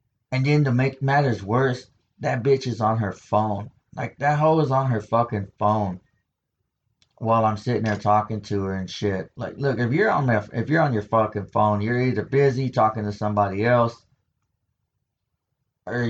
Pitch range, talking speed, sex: 105-130 Hz, 180 wpm, male